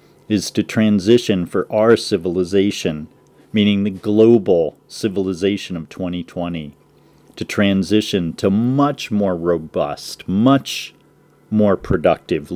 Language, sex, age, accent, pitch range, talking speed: English, male, 40-59, American, 85-125 Hz, 100 wpm